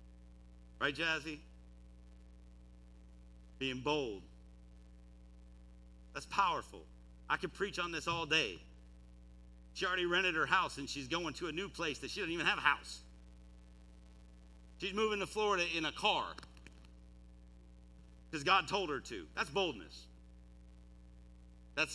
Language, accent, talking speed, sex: English, American, 130 wpm, male